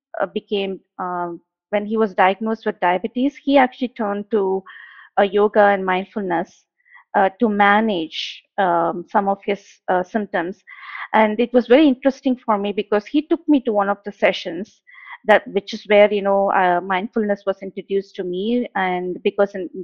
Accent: Indian